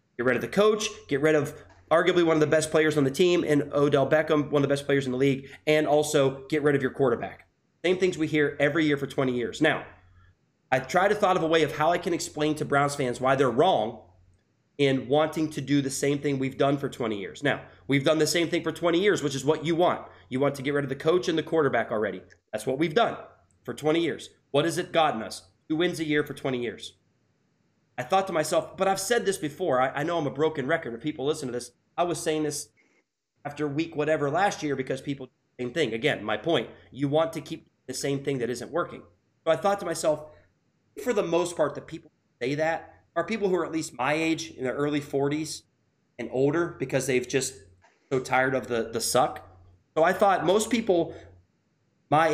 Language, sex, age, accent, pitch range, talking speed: English, male, 30-49, American, 130-160 Hz, 245 wpm